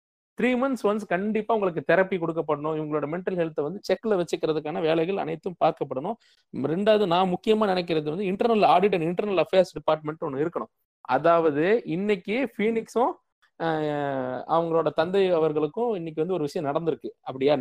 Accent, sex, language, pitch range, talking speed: native, male, Tamil, 160-215 Hz, 140 wpm